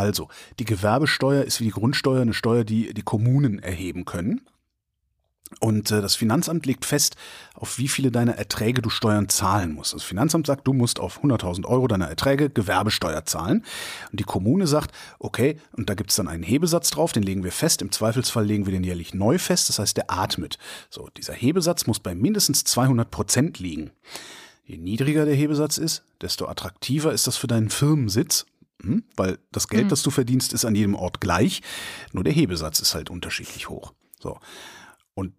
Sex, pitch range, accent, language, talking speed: male, 105-135 Hz, German, German, 190 wpm